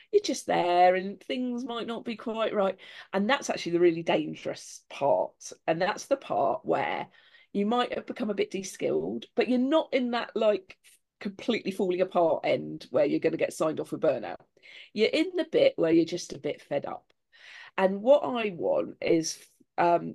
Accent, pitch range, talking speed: British, 180-240 Hz, 195 wpm